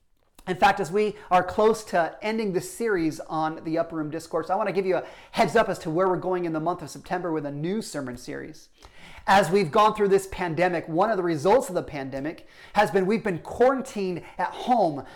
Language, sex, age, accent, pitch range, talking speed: English, male, 30-49, American, 170-220 Hz, 230 wpm